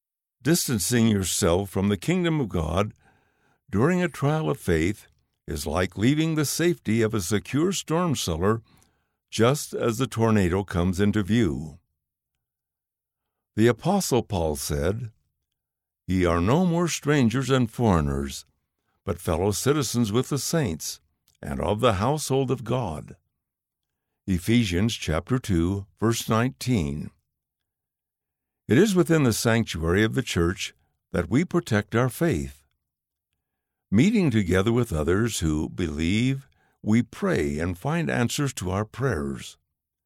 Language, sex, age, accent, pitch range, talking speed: English, male, 60-79, American, 85-135 Hz, 125 wpm